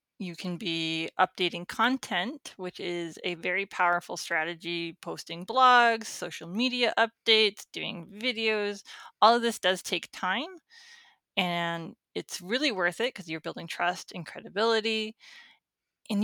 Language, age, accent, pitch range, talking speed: English, 20-39, American, 175-220 Hz, 135 wpm